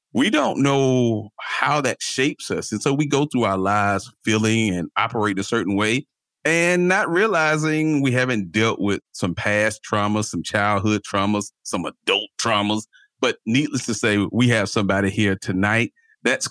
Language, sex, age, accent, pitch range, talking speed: English, male, 40-59, American, 100-165 Hz, 165 wpm